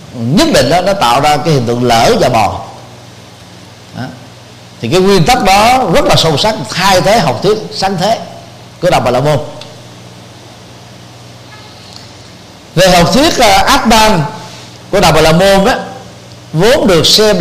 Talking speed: 160 wpm